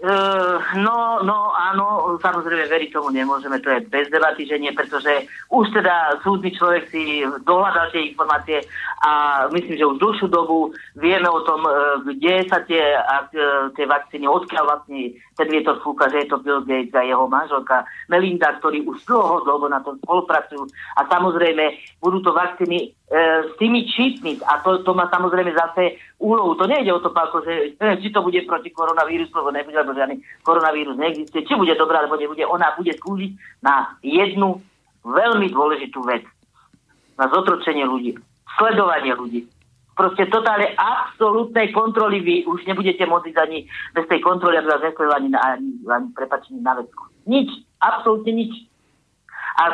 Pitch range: 145-195 Hz